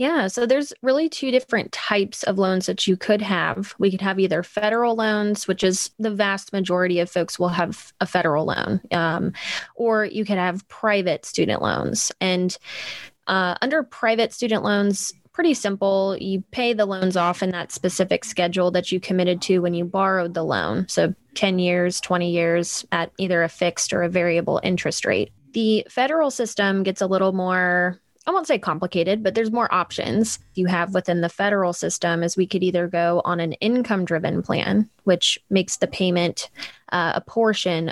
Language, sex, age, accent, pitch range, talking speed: English, female, 20-39, American, 175-205 Hz, 185 wpm